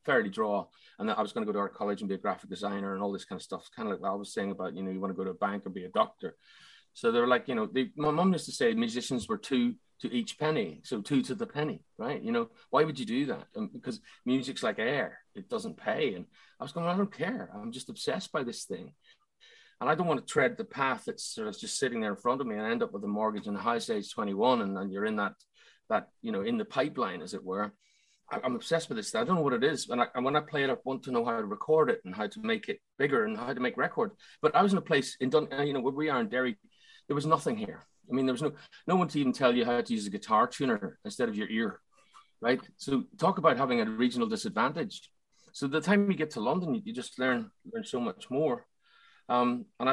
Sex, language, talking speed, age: male, English, 290 wpm, 30-49